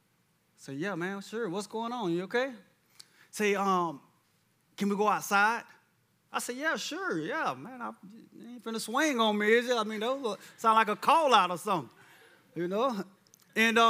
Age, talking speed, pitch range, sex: 20-39, 205 wpm, 155-205 Hz, male